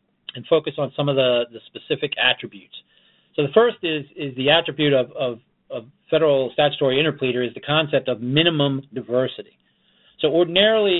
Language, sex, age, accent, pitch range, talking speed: English, male, 40-59, American, 120-155 Hz, 165 wpm